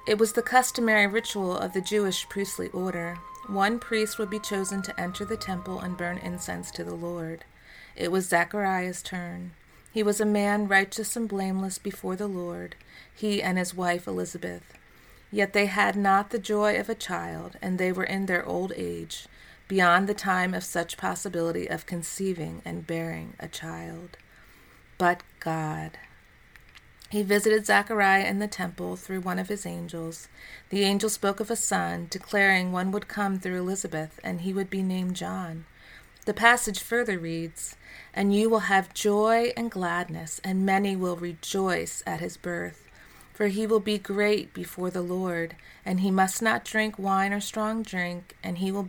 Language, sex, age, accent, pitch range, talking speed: English, female, 30-49, American, 175-205 Hz, 175 wpm